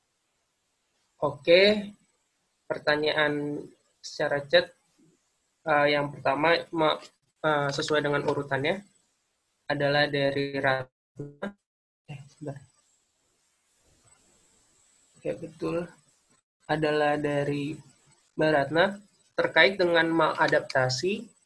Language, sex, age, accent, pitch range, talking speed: Indonesian, male, 20-39, native, 140-160 Hz, 70 wpm